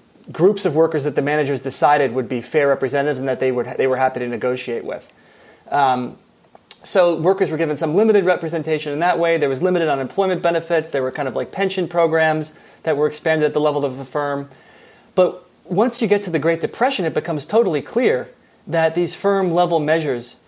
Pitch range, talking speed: 145-175 Hz, 200 wpm